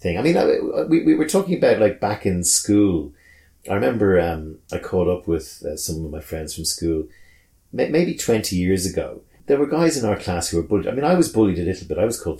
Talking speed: 245 wpm